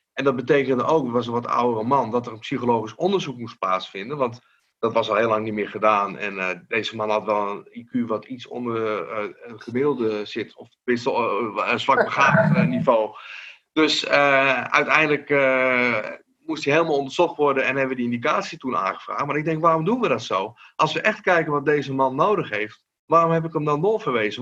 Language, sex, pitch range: Dutch, male, 125-155 Hz